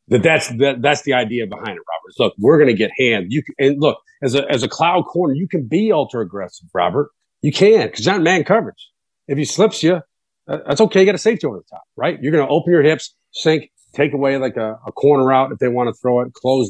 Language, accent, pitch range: English, American, 110-145 Hz